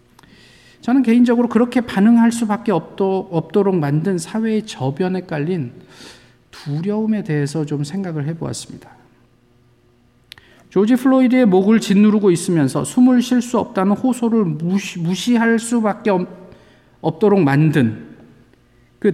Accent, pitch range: native, 125-215 Hz